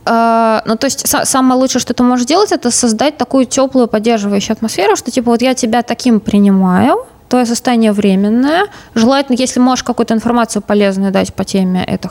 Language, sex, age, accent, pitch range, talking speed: Russian, female, 20-39, native, 205-250 Hz, 175 wpm